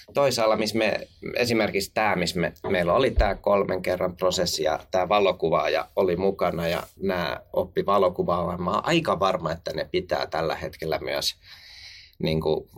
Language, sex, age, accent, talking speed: Finnish, male, 30-49, native, 160 wpm